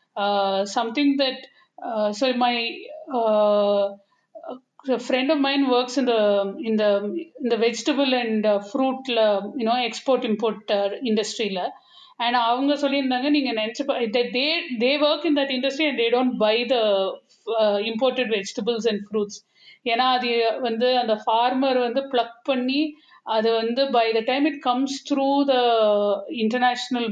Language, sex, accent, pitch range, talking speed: Tamil, female, native, 220-260 Hz, 155 wpm